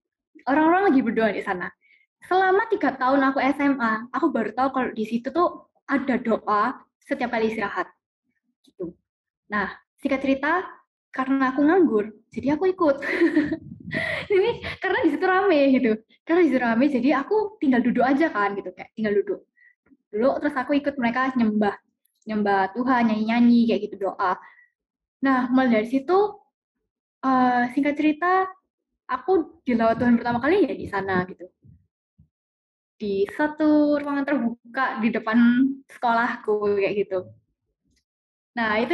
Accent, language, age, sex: native, Indonesian, 10-29, female